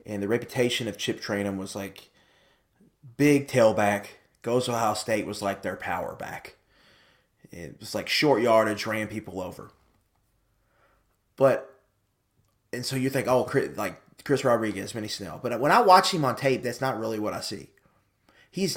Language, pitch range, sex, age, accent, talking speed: English, 105-130 Hz, male, 30-49, American, 165 wpm